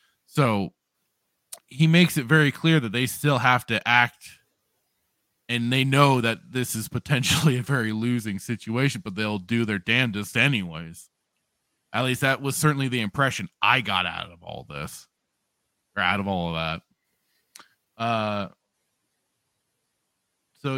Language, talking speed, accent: English, 145 wpm, American